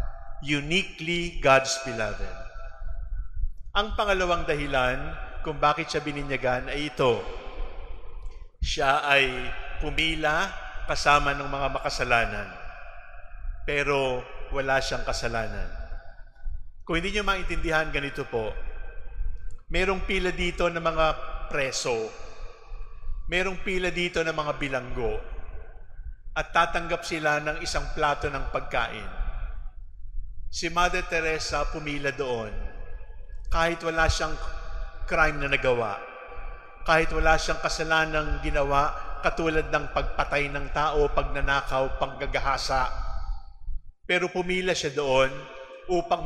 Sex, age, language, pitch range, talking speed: male, 50-69, English, 115-165 Hz, 100 wpm